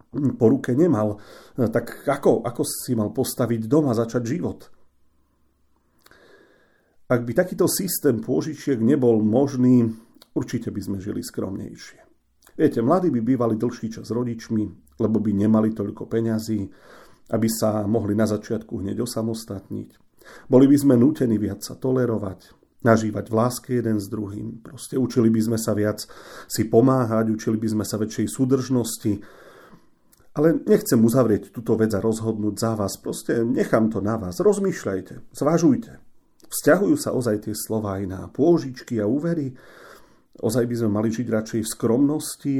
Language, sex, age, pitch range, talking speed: Slovak, male, 40-59, 105-130 Hz, 145 wpm